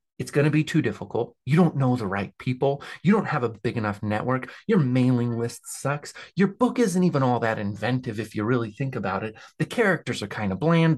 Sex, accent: male, American